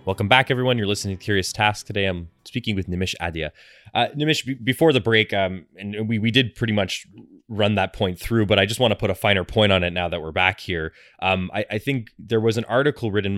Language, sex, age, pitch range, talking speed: English, male, 20-39, 90-110 Hz, 250 wpm